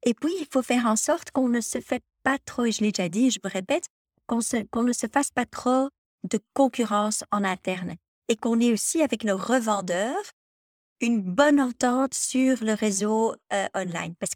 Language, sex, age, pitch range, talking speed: Dutch, female, 40-59, 195-255 Hz, 205 wpm